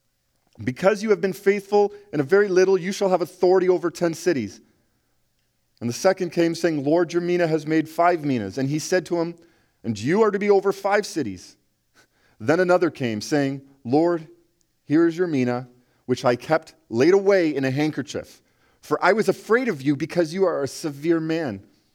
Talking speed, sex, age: 190 wpm, male, 40-59